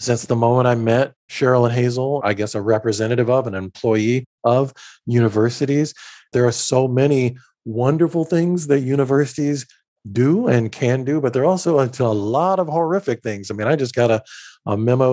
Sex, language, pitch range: male, English, 115-150 Hz